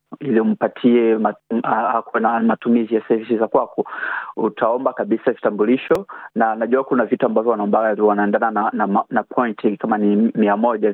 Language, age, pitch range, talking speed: Swahili, 30-49, 110-130 Hz, 160 wpm